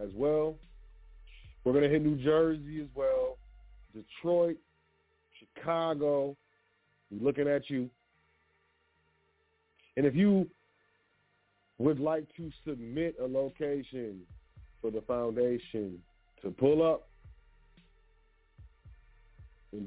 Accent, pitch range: American, 105-140 Hz